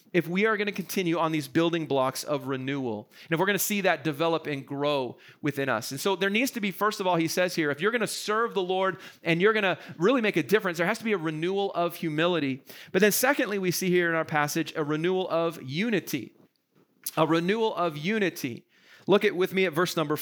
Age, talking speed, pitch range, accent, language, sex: 40-59, 245 wpm, 155-200 Hz, American, English, male